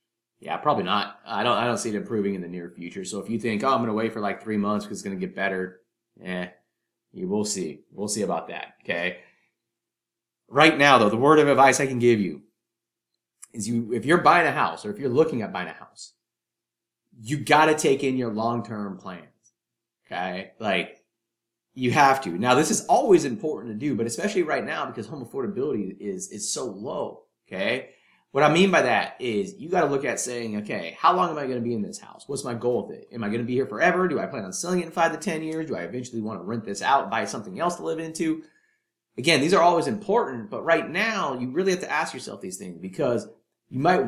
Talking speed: 240 wpm